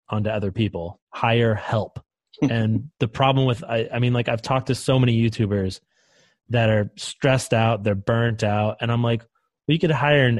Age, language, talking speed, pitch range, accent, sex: 20-39, English, 195 wpm, 110-145 Hz, American, male